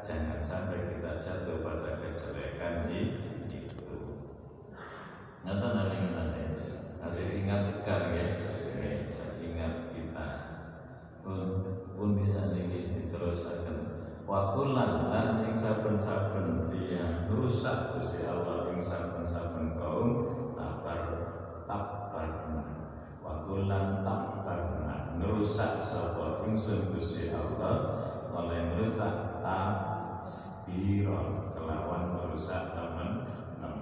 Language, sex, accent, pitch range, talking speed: Indonesian, male, native, 85-110 Hz, 70 wpm